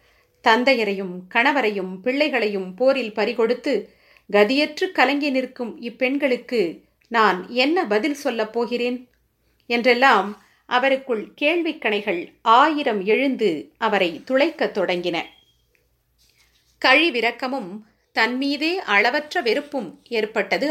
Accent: native